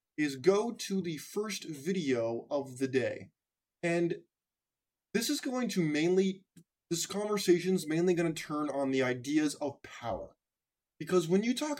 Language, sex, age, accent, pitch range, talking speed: English, male, 20-39, American, 140-190 Hz, 145 wpm